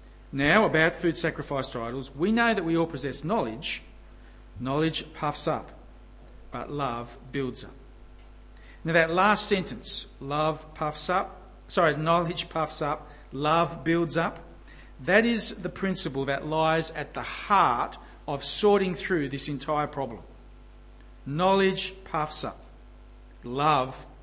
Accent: Australian